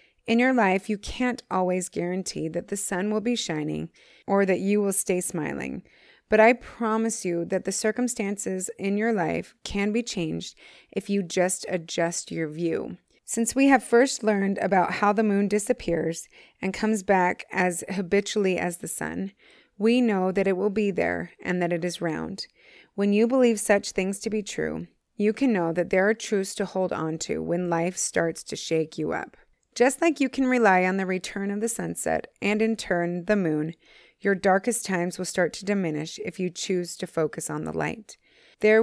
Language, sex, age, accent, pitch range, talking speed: English, female, 30-49, American, 180-220 Hz, 195 wpm